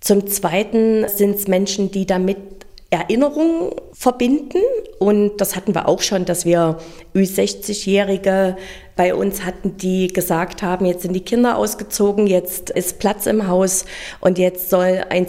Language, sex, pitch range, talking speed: German, female, 185-235 Hz, 150 wpm